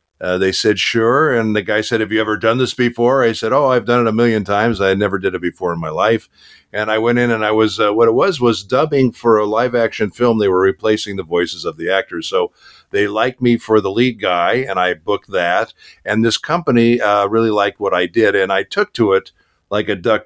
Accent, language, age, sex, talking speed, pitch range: American, English, 50-69, male, 255 wpm, 95-115 Hz